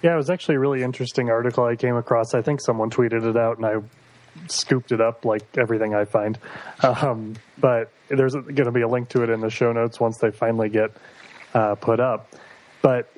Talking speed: 220 wpm